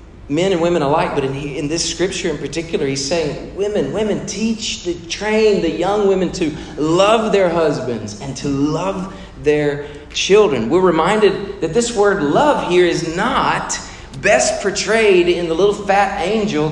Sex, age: male, 40-59